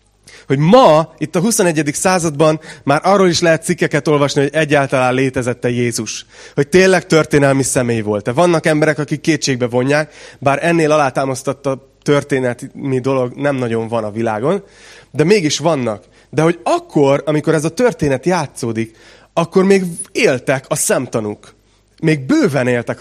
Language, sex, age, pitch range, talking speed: Hungarian, male, 30-49, 125-160 Hz, 145 wpm